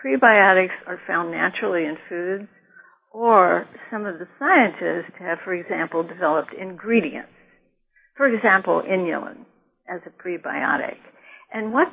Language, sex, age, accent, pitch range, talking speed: English, female, 60-79, American, 175-225 Hz, 120 wpm